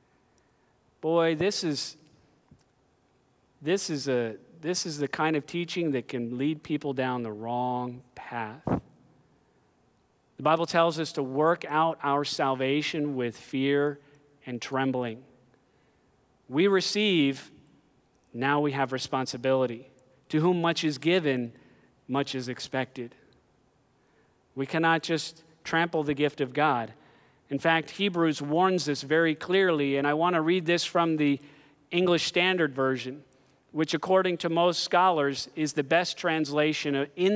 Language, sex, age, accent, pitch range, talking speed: English, male, 40-59, American, 135-165 Hz, 125 wpm